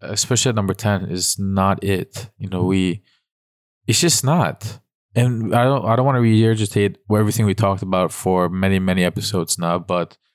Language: English